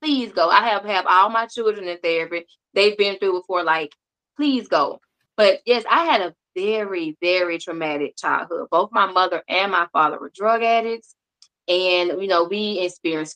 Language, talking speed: English, 180 wpm